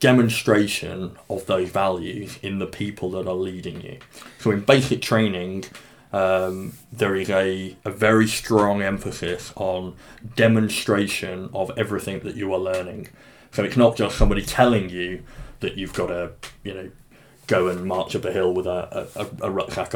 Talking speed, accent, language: 165 wpm, British, English